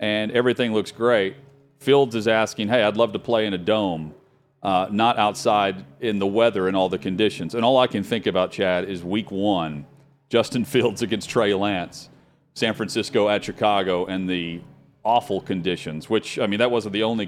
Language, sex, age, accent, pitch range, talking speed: English, male, 40-59, American, 95-120 Hz, 190 wpm